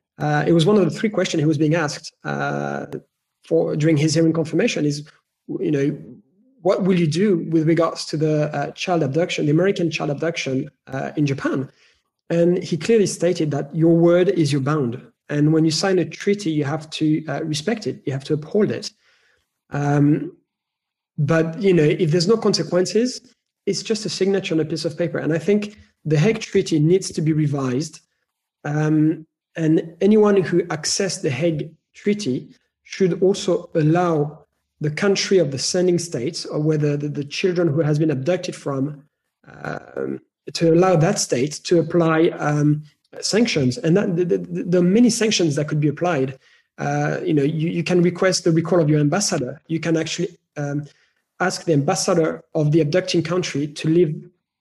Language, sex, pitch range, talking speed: English, male, 150-180 Hz, 180 wpm